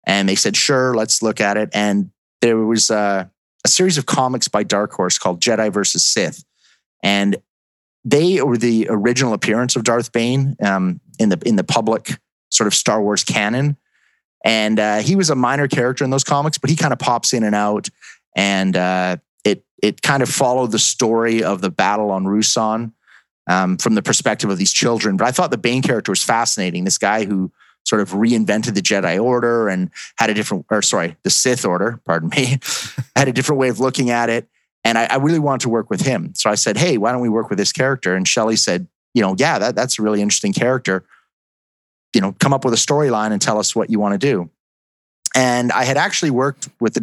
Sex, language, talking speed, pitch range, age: male, English, 220 wpm, 100-130 Hz, 30-49